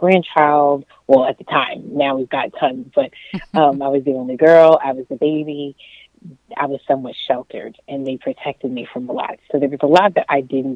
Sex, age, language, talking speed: female, 30-49, English, 220 wpm